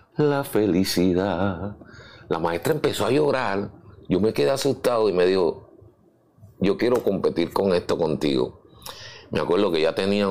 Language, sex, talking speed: Spanish, male, 145 wpm